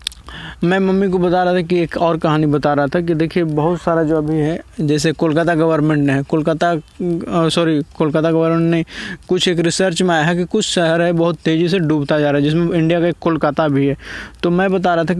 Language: Hindi